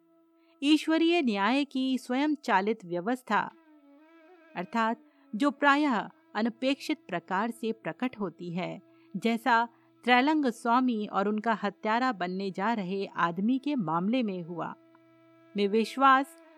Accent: native